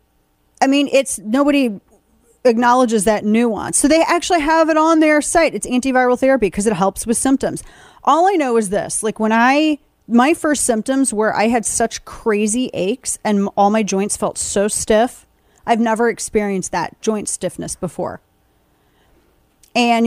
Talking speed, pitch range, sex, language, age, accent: 165 wpm, 190-260 Hz, female, English, 30-49, American